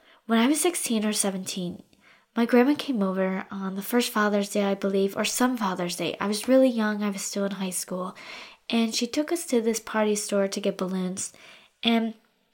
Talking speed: 205 wpm